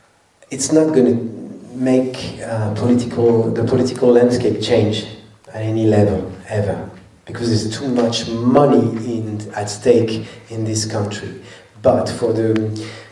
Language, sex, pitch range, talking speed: English, male, 110-125 Hz, 135 wpm